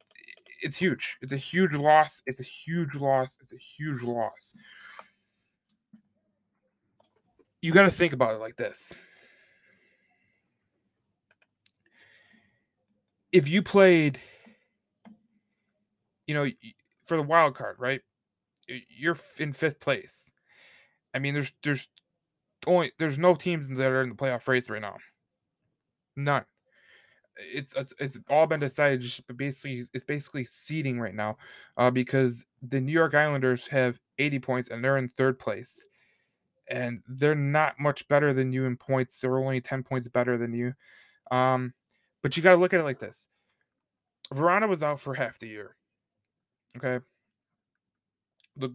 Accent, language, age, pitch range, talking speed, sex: American, English, 20-39, 125-155 Hz, 140 wpm, male